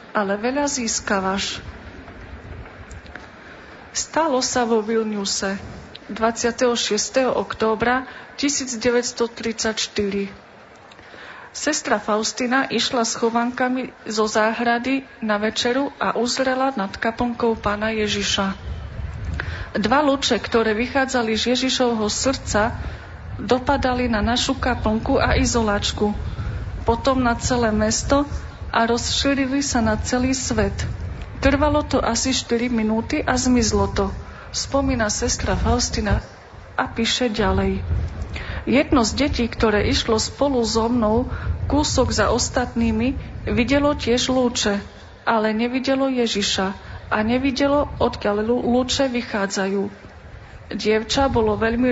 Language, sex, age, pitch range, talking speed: Slovak, female, 40-59, 220-255 Hz, 100 wpm